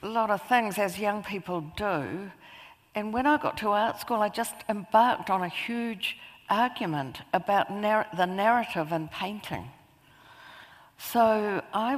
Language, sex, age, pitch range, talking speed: English, female, 60-79, 170-220 Hz, 145 wpm